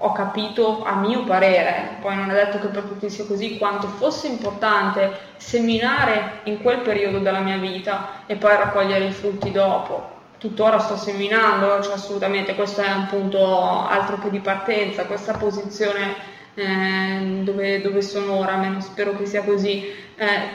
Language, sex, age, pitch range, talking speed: Italian, female, 20-39, 200-220 Hz, 165 wpm